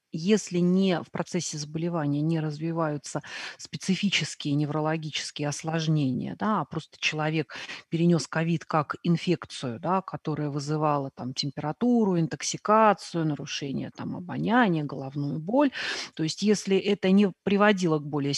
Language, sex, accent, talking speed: Russian, female, native, 105 wpm